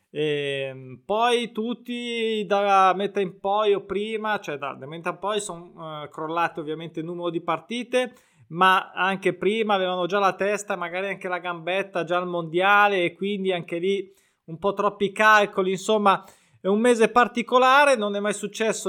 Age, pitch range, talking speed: 20-39, 170-210 Hz, 160 wpm